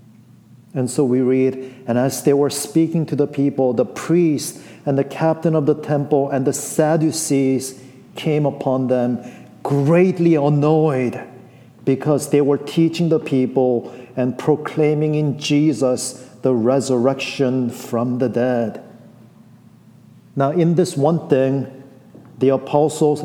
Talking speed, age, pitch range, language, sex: 130 wpm, 50-69, 125-150 Hz, English, male